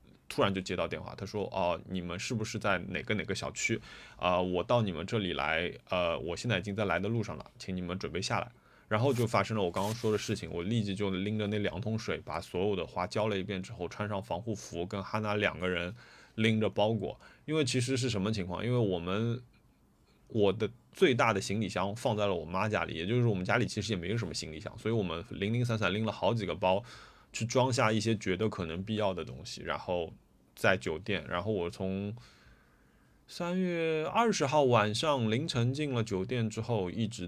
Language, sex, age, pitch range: Chinese, male, 20-39, 90-115 Hz